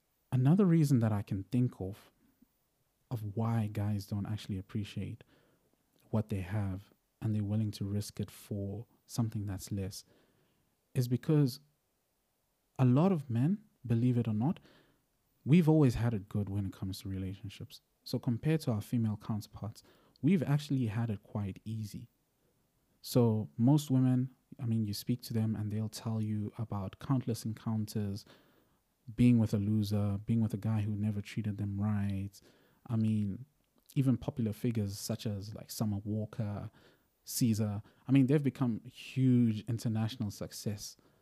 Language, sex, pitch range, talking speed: English, male, 105-125 Hz, 155 wpm